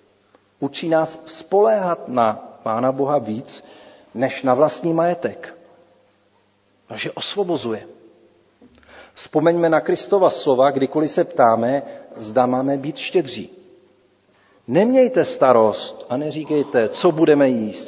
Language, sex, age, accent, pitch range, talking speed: Czech, male, 40-59, native, 110-165 Hz, 105 wpm